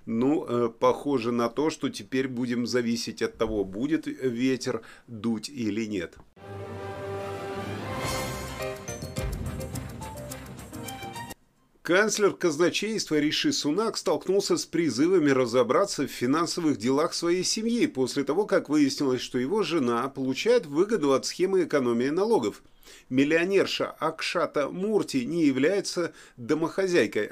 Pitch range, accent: 125-200 Hz, native